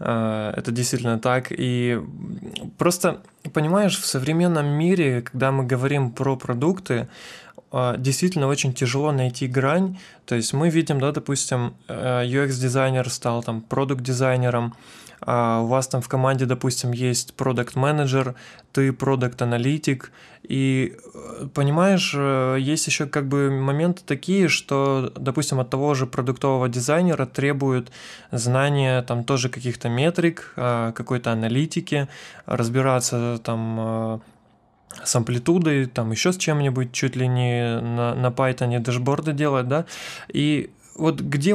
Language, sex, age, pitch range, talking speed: Russian, male, 20-39, 125-150 Hz, 125 wpm